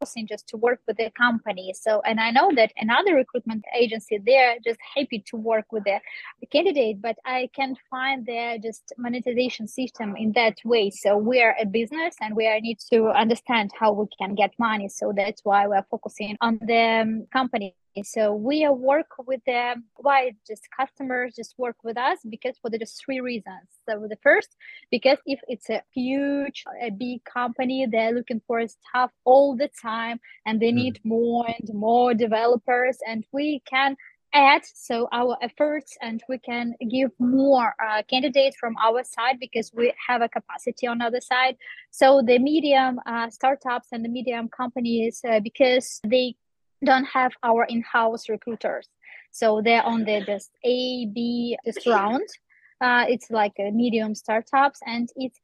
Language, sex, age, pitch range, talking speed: English, female, 20-39, 225-255 Hz, 170 wpm